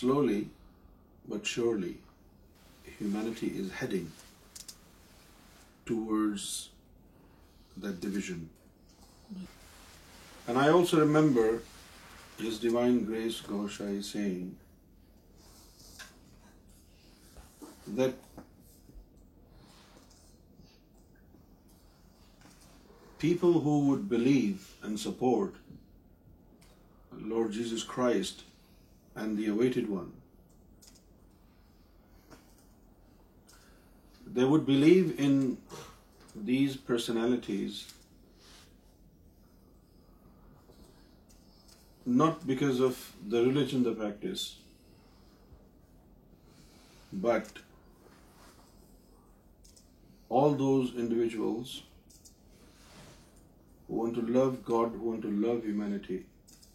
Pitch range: 90-125 Hz